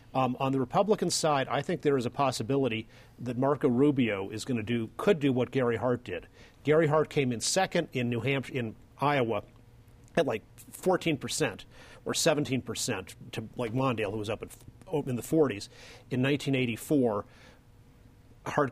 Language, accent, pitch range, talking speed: English, American, 120-140 Hz, 175 wpm